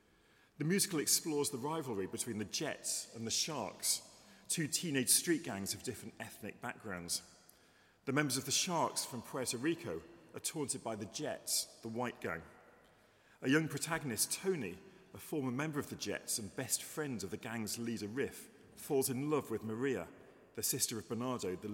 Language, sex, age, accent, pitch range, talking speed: English, male, 40-59, British, 110-145 Hz, 175 wpm